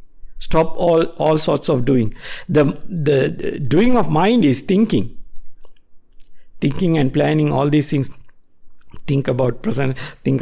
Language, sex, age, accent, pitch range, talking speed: English, male, 60-79, Indian, 125-155 Hz, 140 wpm